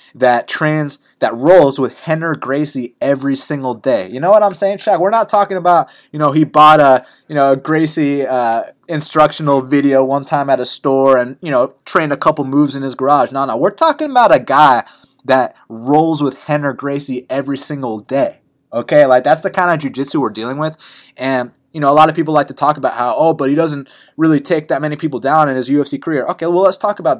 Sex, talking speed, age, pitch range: male, 225 wpm, 20-39, 135-180 Hz